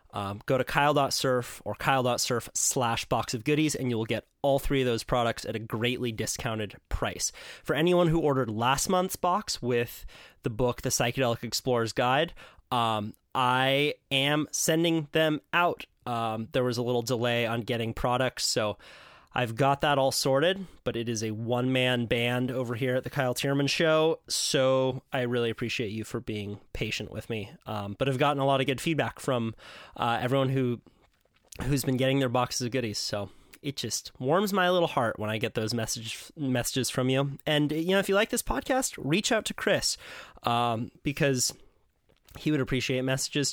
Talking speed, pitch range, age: 185 wpm, 120-140 Hz, 20-39